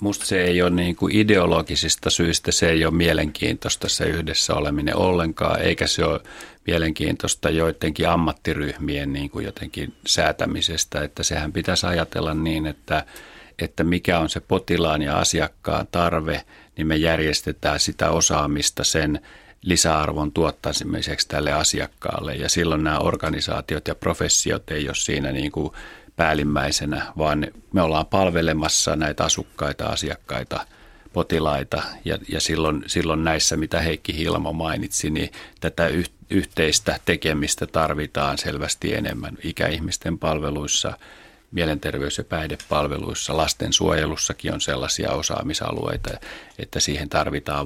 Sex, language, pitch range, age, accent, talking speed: male, Finnish, 75-85 Hz, 40-59, native, 120 wpm